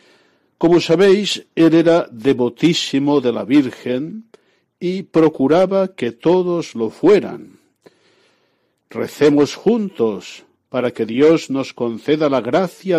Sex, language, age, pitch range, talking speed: male, Spanish, 60-79, 125-180 Hz, 105 wpm